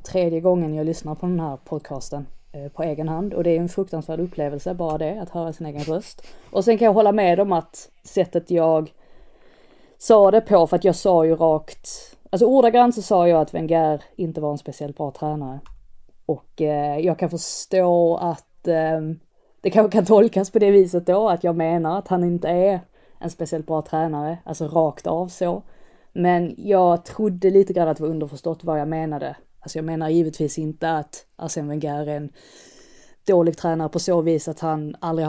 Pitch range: 155-180 Hz